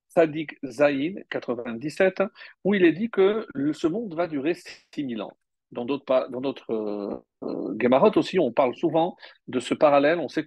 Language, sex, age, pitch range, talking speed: French, male, 50-69, 135-215 Hz, 180 wpm